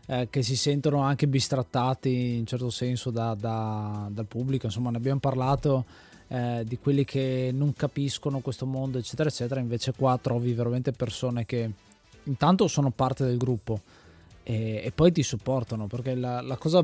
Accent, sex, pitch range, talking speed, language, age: native, male, 115-145 Hz, 155 wpm, Italian, 20-39